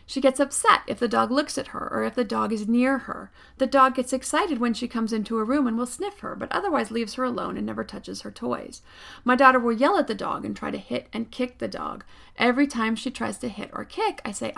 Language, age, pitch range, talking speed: English, 40-59, 230-275 Hz, 270 wpm